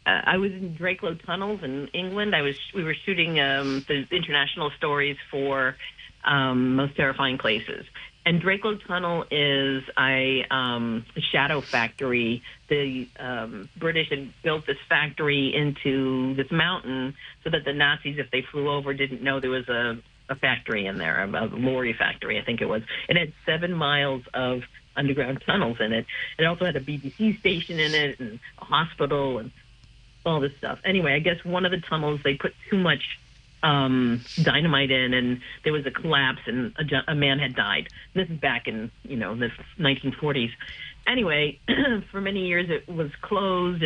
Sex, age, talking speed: female, 50-69, 180 wpm